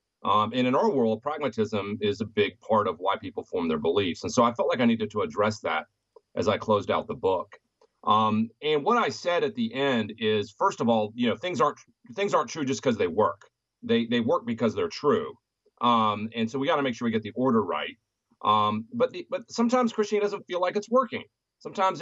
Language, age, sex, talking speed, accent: English, 40-59, male, 235 wpm, American